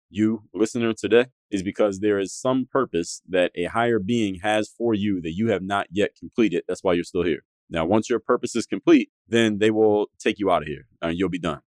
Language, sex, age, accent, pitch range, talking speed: English, male, 20-39, American, 95-115 Hz, 230 wpm